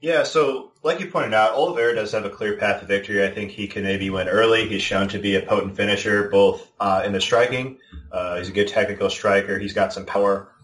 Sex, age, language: male, 20-39, English